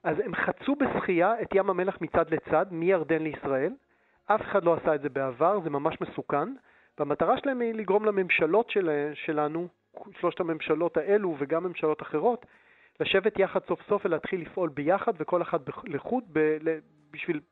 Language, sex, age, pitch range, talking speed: Hebrew, male, 40-59, 150-195 Hz, 155 wpm